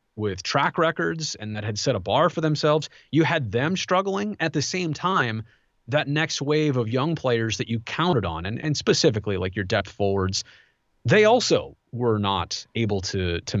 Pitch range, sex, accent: 105-155 Hz, male, American